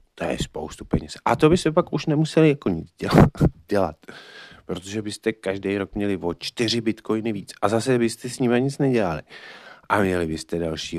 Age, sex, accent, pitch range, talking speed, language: 30-49, male, native, 100-130 Hz, 185 wpm, Czech